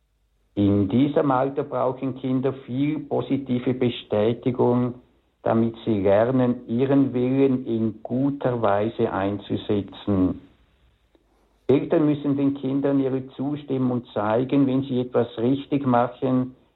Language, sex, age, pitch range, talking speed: German, male, 60-79, 110-135 Hz, 105 wpm